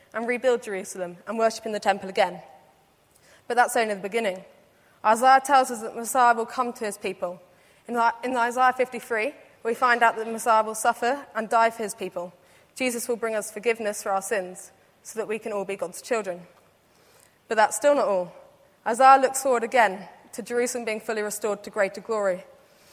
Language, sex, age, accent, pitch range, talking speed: English, female, 20-39, British, 200-235 Hz, 195 wpm